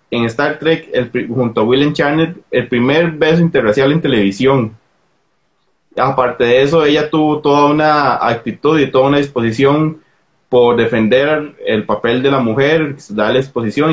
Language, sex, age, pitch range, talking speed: Spanish, male, 20-39, 110-150 Hz, 155 wpm